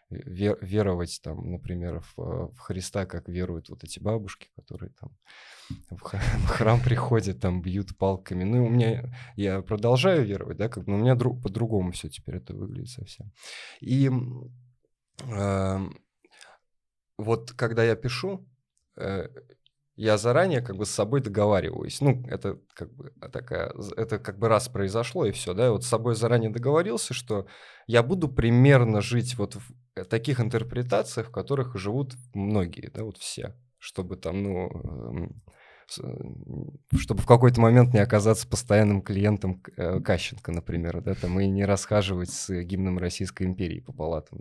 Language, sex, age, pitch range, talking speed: Russian, male, 20-39, 95-125 Hz, 155 wpm